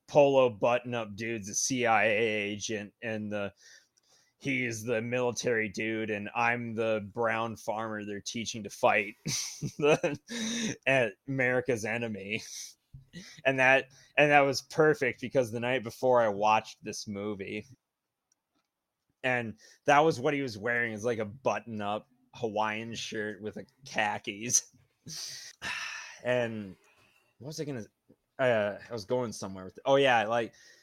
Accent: American